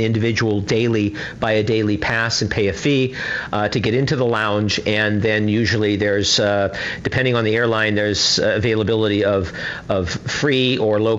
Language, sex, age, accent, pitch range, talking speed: English, male, 50-69, American, 110-145 Hz, 170 wpm